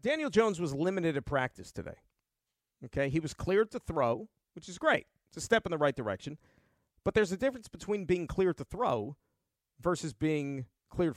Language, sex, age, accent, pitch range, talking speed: English, male, 50-69, American, 145-215 Hz, 190 wpm